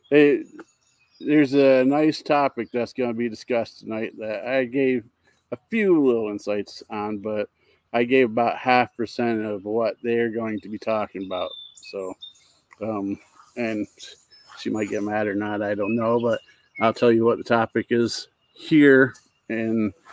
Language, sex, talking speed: English, male, 165 wpm